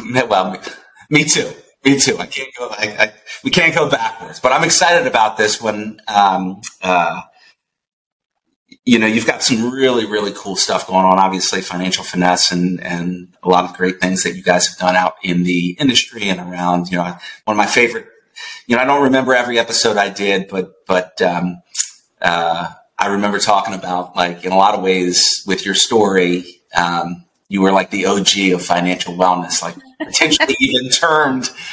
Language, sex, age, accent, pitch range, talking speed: English, male, 30-49, American, 90-120 Hz, 185 wpm